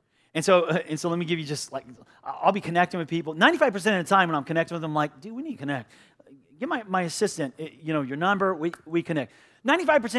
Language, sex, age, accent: English, male, 30-49, American